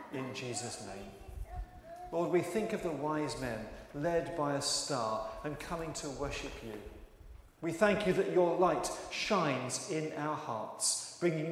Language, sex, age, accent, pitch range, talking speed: English, male, 40-59, British, 130-180 Hz, 155 wpm